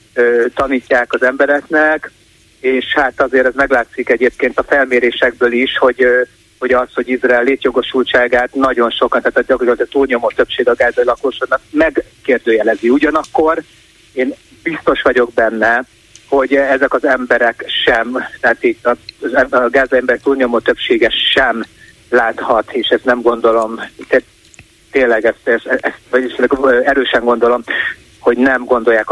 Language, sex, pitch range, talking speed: Hungarian, male, 115-135 Hz, 130 wpm